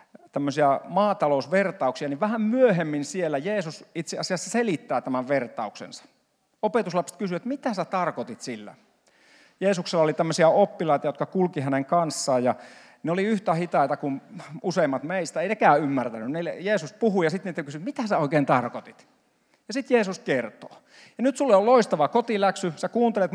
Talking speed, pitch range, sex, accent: 155 wpm, 155-215 Hz, male, native